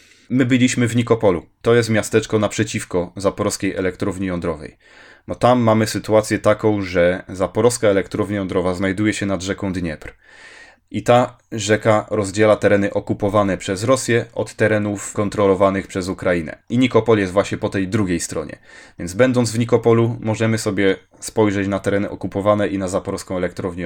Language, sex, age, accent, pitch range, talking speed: Polish, male, 20-39, native, 95-115 Hz, 150 wpm